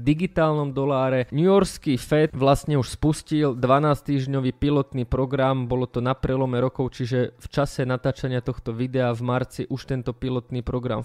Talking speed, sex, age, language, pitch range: 160 wpm, male, 20-39, Slovak, 125-140 Hz